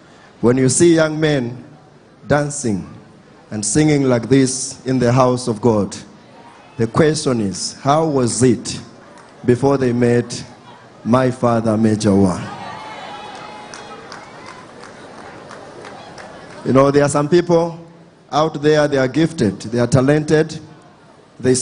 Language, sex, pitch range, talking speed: English, male, 125-160 Hz, 120 wpm